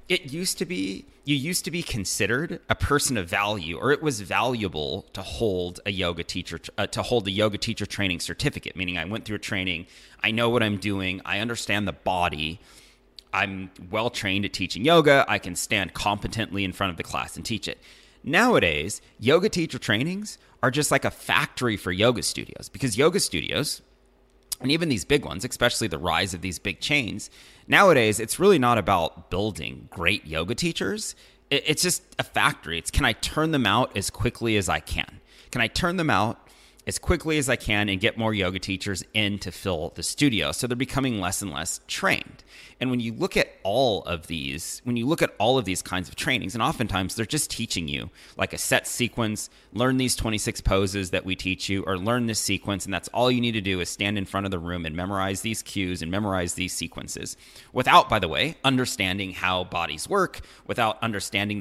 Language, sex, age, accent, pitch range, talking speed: English, male, 30-49, American, 90-120 Hz, 205 wpm